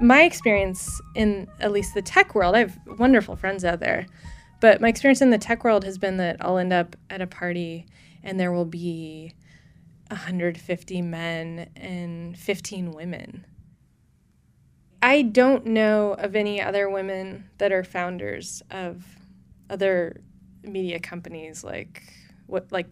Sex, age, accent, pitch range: female, 20-39, American, 180-220 Hz